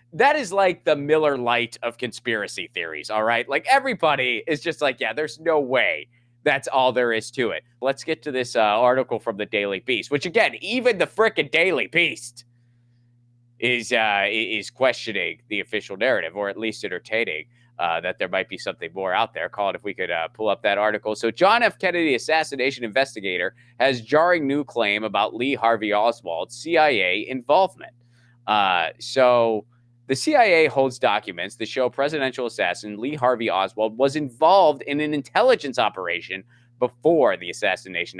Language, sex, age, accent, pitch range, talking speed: English, male, 20-39, American, 115-150 Hz, 175 wpm